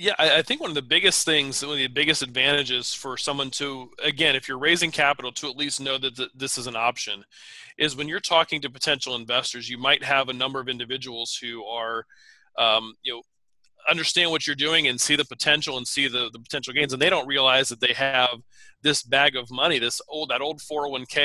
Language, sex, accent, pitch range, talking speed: English, male, American, 125-145 Hz, 225 wpm